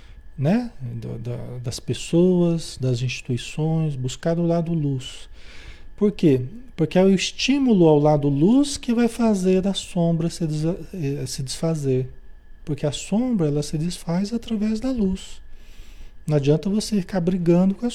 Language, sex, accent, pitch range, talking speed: Portuguese, male, Brazilian, 130-190 Hz, 135 wpm